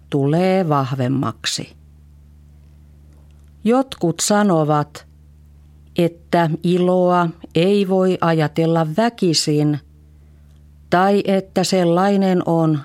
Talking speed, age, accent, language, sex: 65 wpm, 40-59, native, Finnish, female